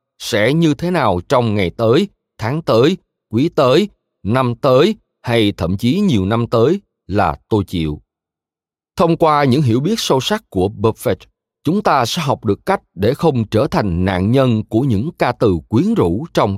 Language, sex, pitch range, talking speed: Vietnamese, male, 95-135 Hz, 180 wpm